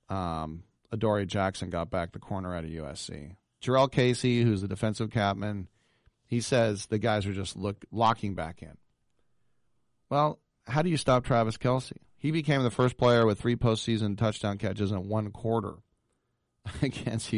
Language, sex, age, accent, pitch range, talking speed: English, male, 40-59, American, 105-135 Hz, 160 wpm